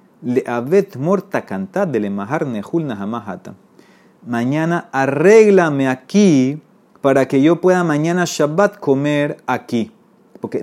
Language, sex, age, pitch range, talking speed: Spanish, male, 30-49, 125-190 Hz, 100 wpm